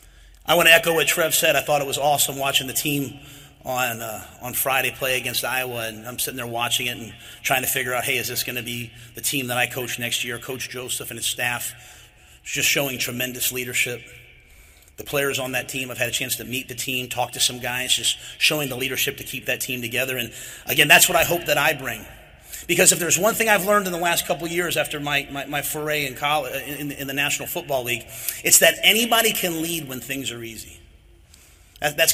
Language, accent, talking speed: English, American, 235 wpm